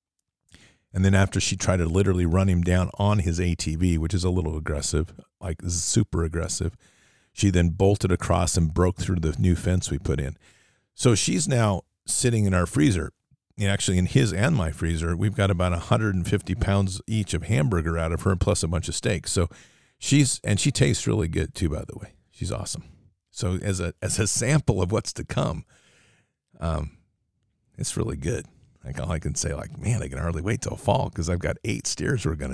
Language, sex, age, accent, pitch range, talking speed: English, male, 50-69, American, 85-110 Hz, 205 wpm